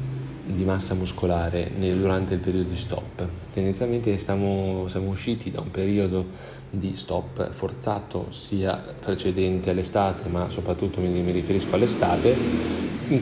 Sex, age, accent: male, 30-49, native